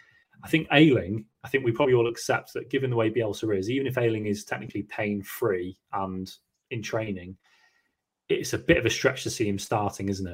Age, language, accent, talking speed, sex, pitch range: 20-39, English, British, 205 wpm, male, 105-135 Hz